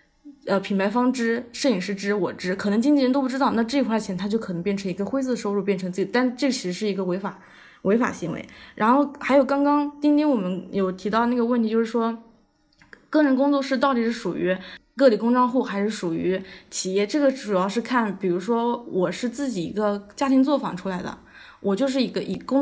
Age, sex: 20-39, female